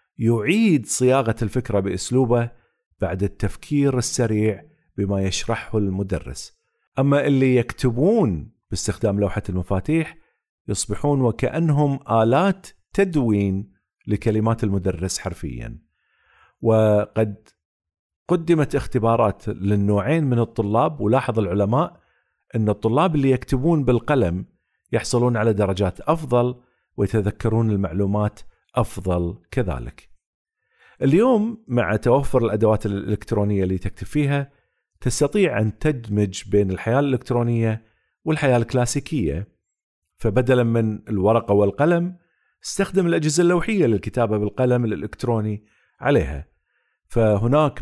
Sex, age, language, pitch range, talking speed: male, 50-69, Arabic, 105-135 Hz, 90 wpm